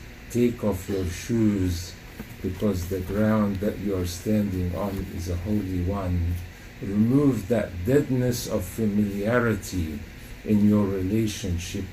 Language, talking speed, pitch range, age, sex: English, 120 wpm, 100-145 Hz, 50-69, male